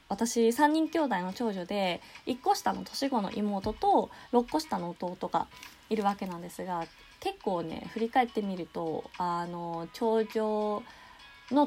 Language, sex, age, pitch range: Japanese, female, 20-39, 190-260 Hz